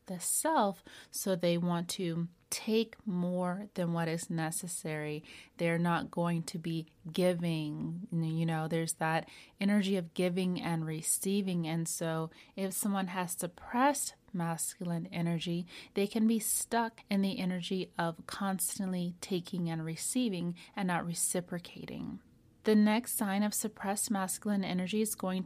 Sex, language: female, English